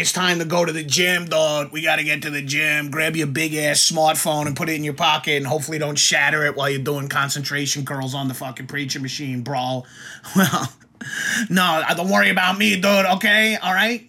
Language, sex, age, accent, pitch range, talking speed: English, male, 30-49, American, 150-190 Hz, 215 wpm